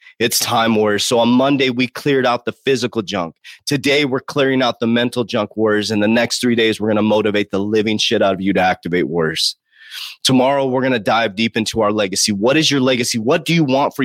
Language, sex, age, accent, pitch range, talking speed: English, male, 30-49, American, 110-145 Hz, 240 wpm